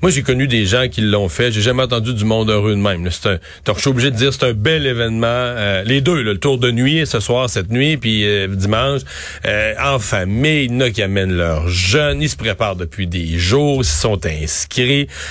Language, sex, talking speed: French, male, 240 wpm